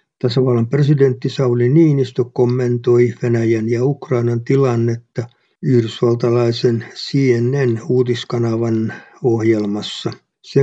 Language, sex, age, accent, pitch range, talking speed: Finnish, male, 50-69, native, 115-135 Hz, 75 wpm